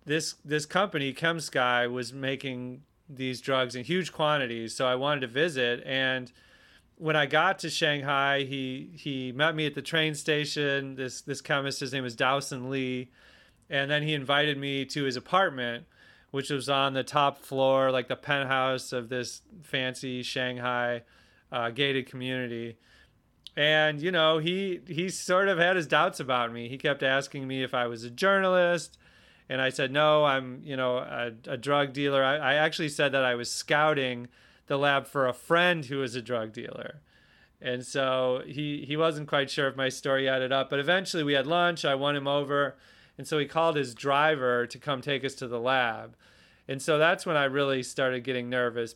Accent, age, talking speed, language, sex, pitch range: American, 30-49, 190 wpm, English, male, 130-150 Hz